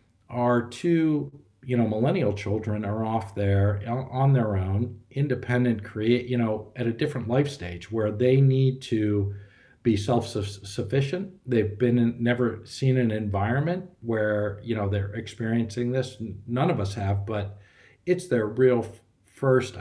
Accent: American